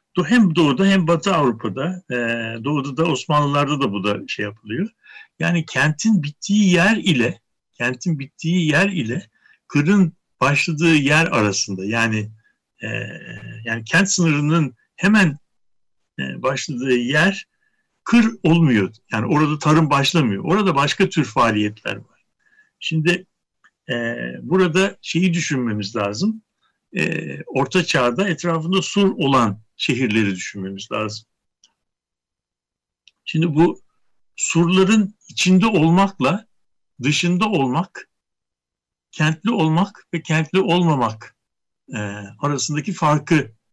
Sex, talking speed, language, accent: male, 100 wpm, Turkish, native